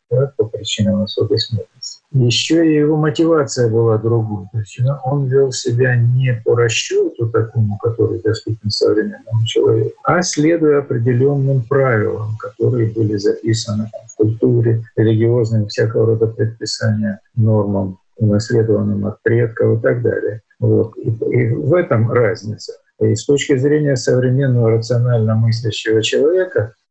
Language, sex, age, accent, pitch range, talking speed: Russian, male, 50-69, native, 110-130 Hz, 125 wpm